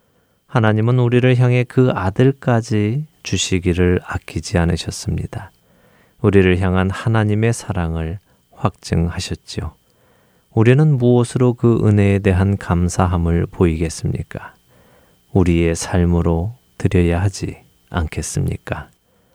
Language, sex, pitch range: Korean, male, 85-115 Hz